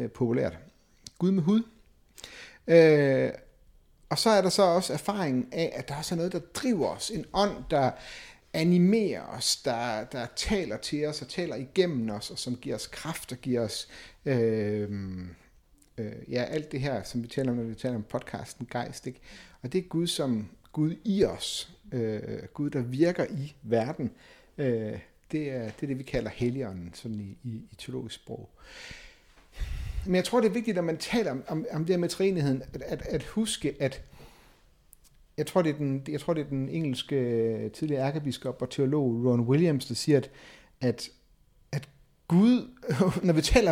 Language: Danish